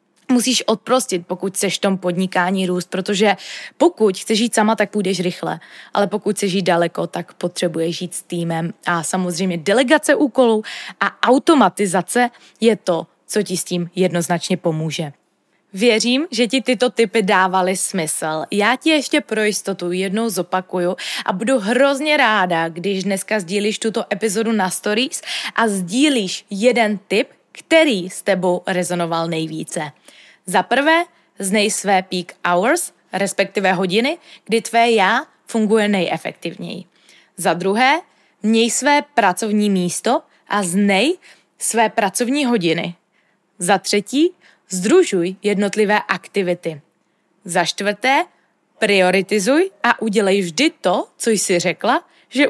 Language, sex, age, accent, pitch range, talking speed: Czech, female, 20-39, native, 180-235 Hz, 130 wpm